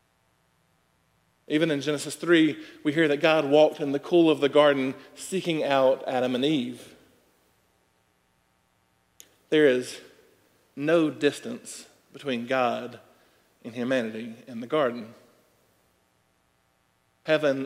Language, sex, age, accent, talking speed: English, male, 40-59, American, 110 wpm